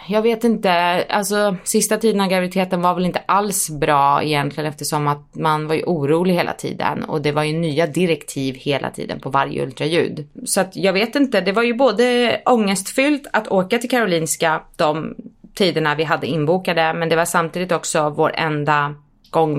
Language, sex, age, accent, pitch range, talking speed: English, female, 30-49, Swedish, 150-195 Hz, 185 wpm